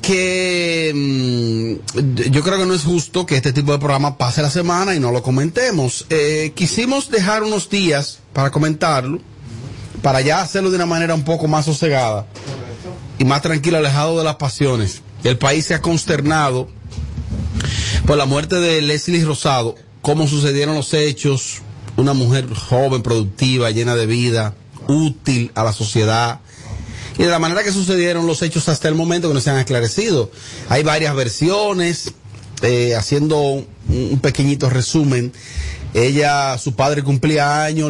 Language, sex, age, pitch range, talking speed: Spanish, male, 30-49, 120-155 Hz, 155 wpm